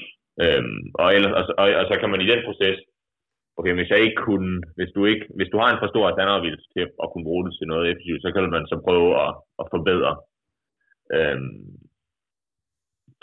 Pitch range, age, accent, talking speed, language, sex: 85-120 Hz, 30-49, native, 200 wpm, Danish, male